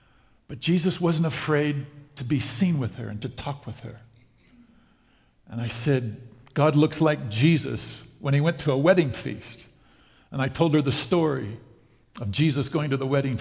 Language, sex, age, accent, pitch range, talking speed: English, male, 60-79, American, 130-170 Hz, 180 wpm